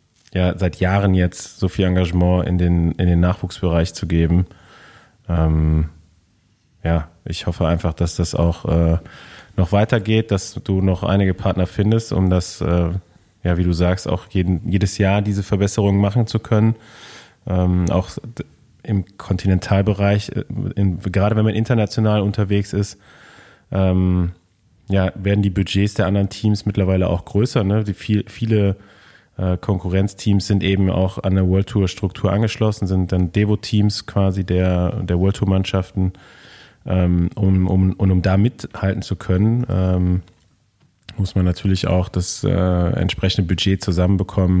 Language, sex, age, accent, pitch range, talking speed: German, male, 20-39, German, 90-100 Hz, 145 wpm